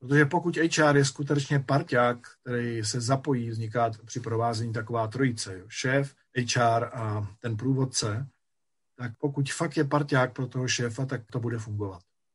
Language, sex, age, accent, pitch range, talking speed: Czech, male, 50-69, native, 115-145 Hz, 150 wpm